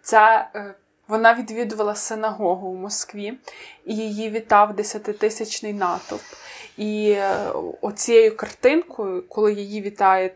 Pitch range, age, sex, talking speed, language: 205-235 Hz, 20-39, female, 100 wpm, Ukrainian